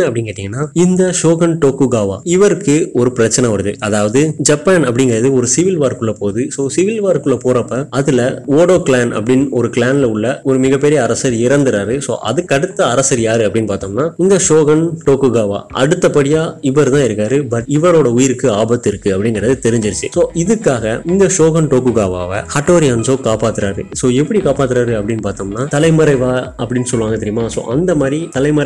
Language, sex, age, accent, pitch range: Tamil, male, 20-39, native, 120-150 Hz